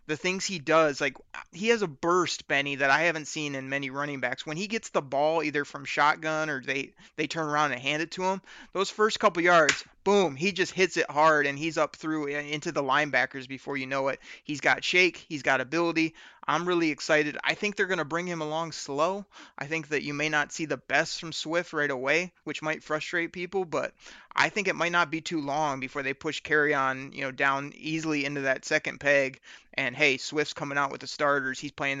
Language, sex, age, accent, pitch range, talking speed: English, male, 30-49, American, 140-165 Hz, 230 wpm